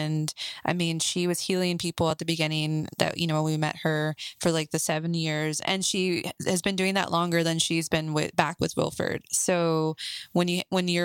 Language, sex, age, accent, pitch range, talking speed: English, female, 20-39, American, 155-180 Hz, 215 wpm